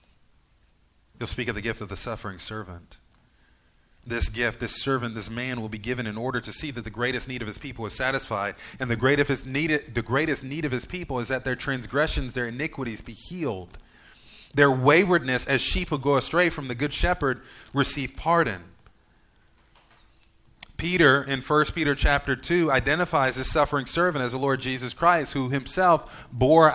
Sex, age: male, 30-49